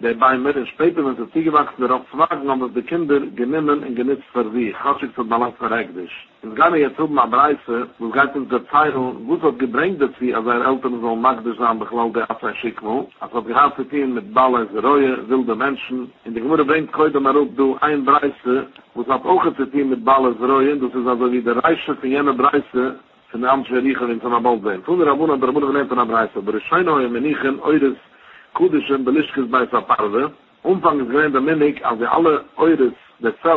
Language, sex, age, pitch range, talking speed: English, male, 50-69, 125-145 Hz, 55 wpm